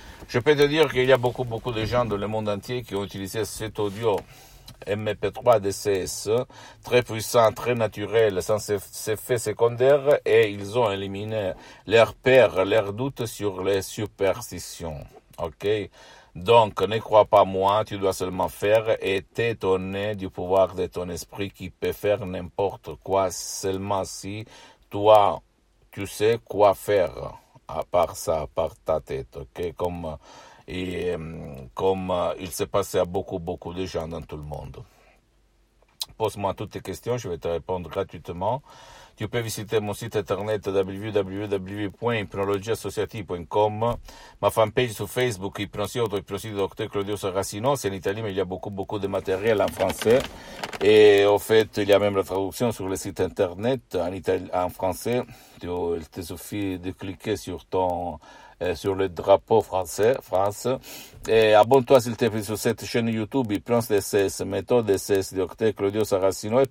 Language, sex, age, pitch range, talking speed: Italian, male, 60-79, 95-110 Hz, 165 wpm